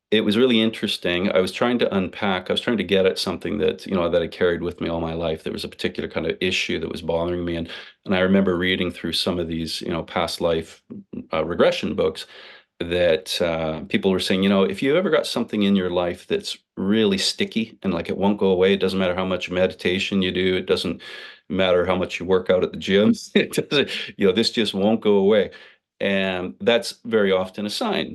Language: English